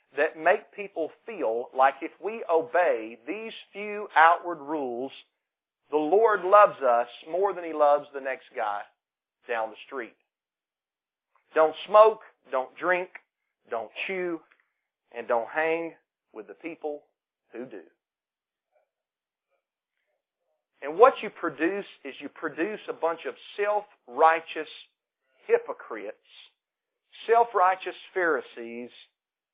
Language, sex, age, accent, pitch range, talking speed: English, male, 40-59, American, 130-180 Hz, 110 wpm